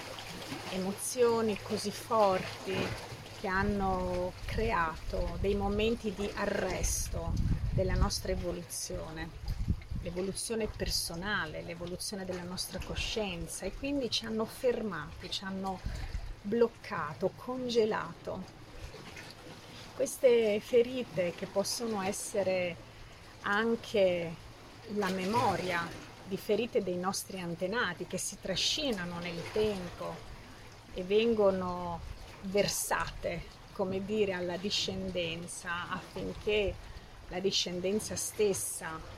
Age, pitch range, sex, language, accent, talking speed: 30-49, 175-210 Hz, female, Italian, native, 85 wpm